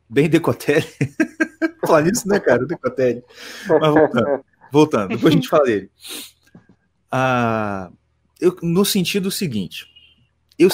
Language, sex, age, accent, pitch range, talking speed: Portuguese, male, 30-49, Brazilian, 120-200 Hz, 110 wpm